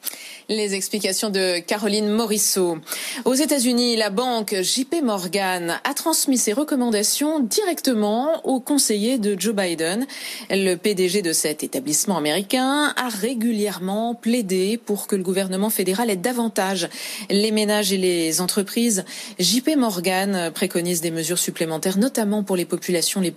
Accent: French